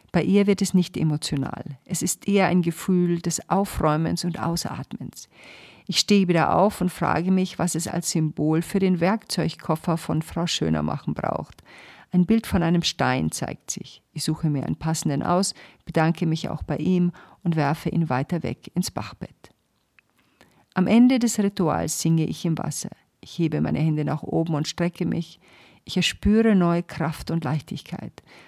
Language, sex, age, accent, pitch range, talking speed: German, female, 50-69, German, 155-180 Hz, 175 wpm